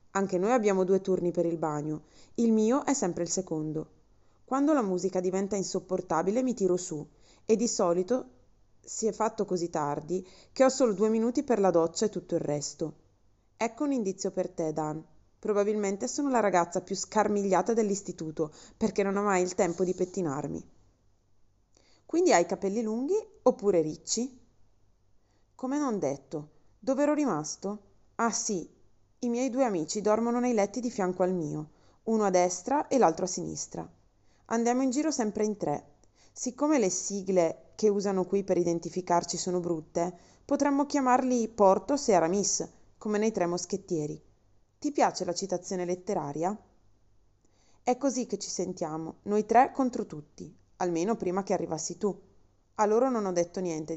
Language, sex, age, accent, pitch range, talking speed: Italian, female, 30-49, native, 160-220 Hz, 160 wpm